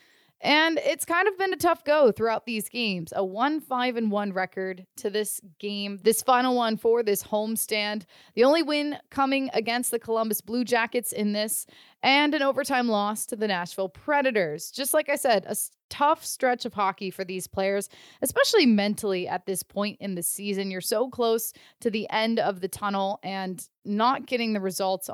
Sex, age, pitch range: female, 20-39, 205-275 Hz